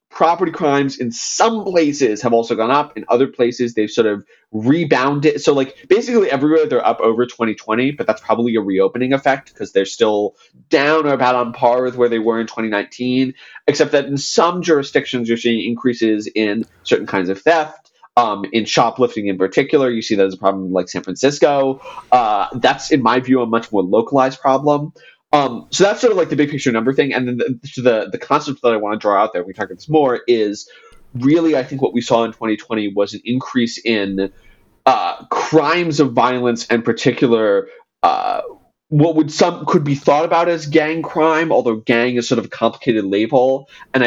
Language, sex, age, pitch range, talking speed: English, male, 30-49, 110-145 Hz, 205 wpm